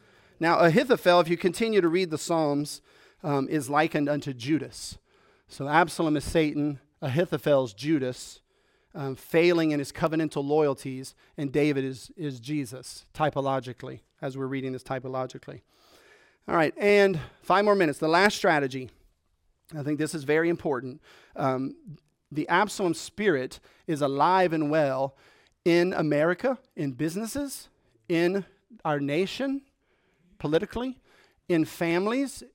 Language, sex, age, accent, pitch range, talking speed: English, male, 40-59, American, 145-180 Hz, 130 wpm